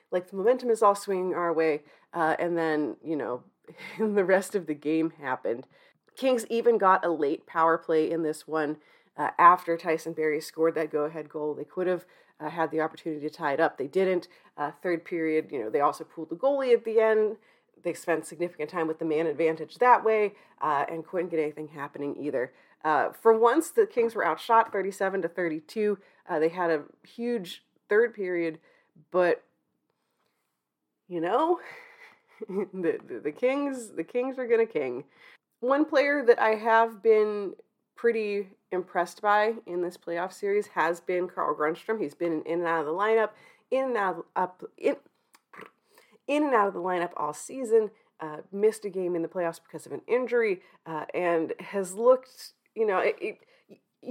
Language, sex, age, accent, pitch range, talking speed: English, female, 30-49, American, 160-225 Hz, 185 wpm